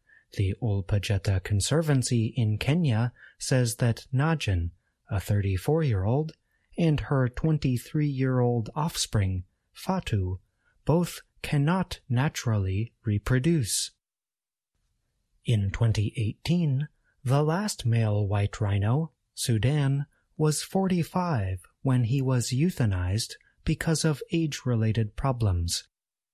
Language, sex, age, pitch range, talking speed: English, male, 30-49, 110-145 Hz, 85 wpm